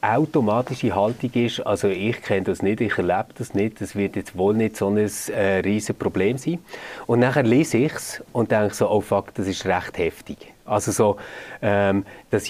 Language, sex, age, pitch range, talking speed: German, male, 30-49, 105-130 Hz, 195 wpm